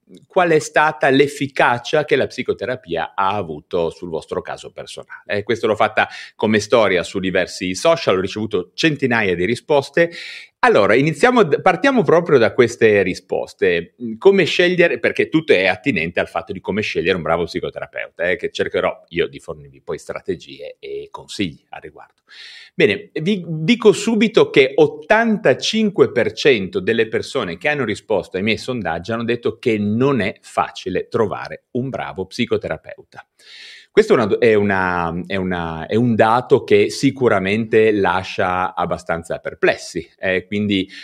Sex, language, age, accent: male, Italian, 30-49, native